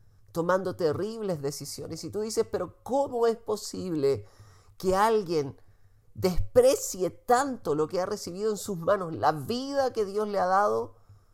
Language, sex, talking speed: Spanish, male, 150 wpm